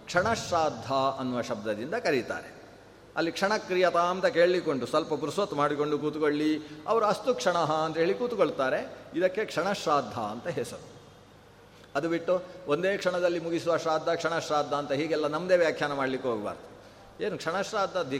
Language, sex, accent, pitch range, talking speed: Kannada, male, native, 145-195 Hz, 120 wpm